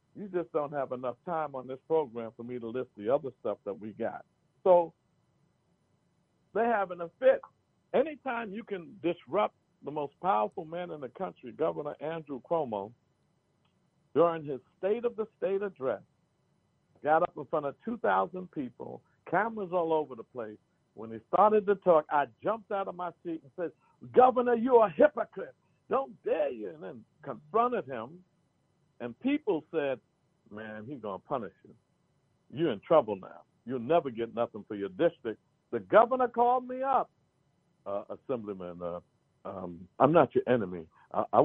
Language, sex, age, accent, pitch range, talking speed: English, male, 60-79, American, 115-180 Hz, 165 wpm